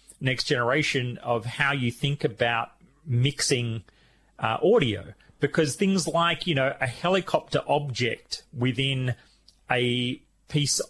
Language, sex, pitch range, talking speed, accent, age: English, male, 115-145 Hz, 115 wpm, Australian, 30-49